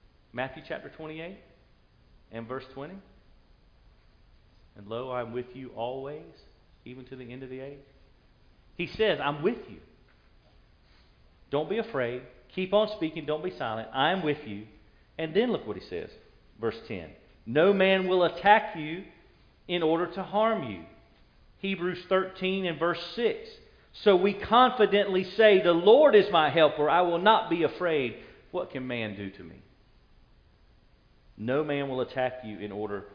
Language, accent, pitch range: English, American, 105-170 Hz